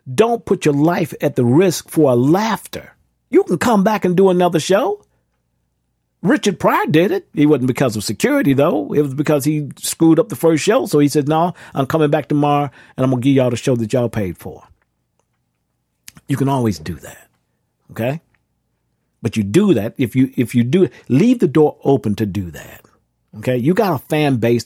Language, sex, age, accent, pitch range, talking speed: English, male, 50-69, American, 115-160 Hz, 210 wpm